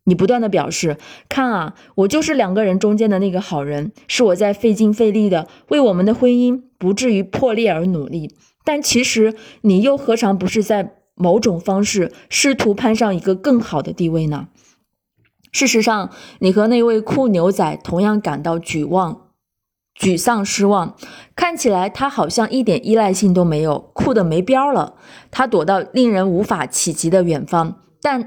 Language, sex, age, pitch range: Chinese, female, 20-39, 180-235 Hz